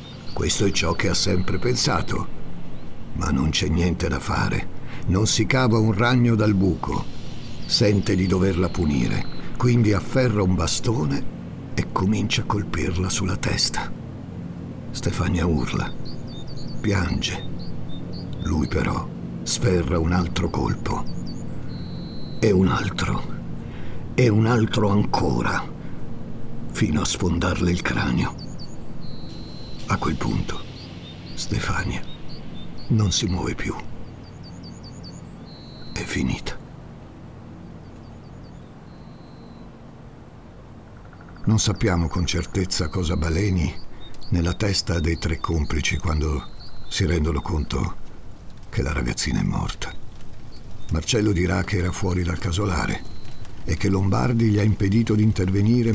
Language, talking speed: Italian, 105 wpm